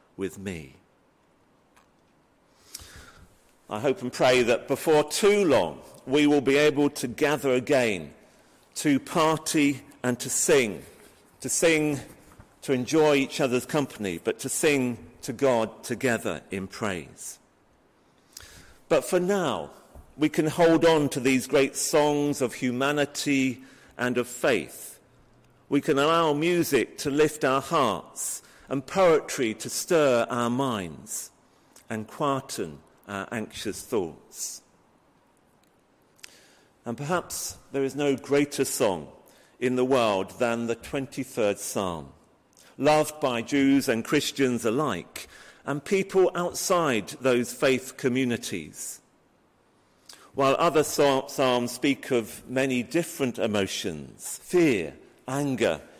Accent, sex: British, male